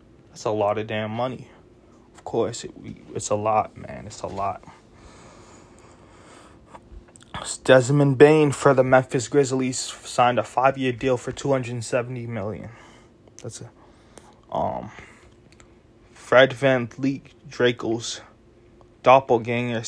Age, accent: 20-39, American